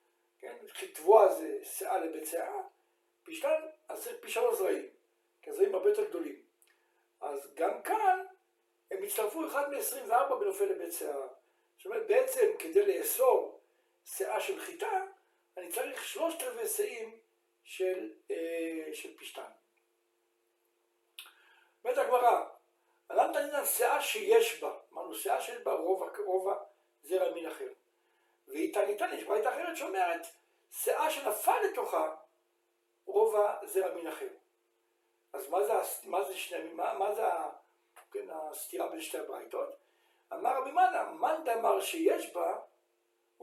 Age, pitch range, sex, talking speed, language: 60-79, 285-425 Hz, male, 95 wpm, Hebrew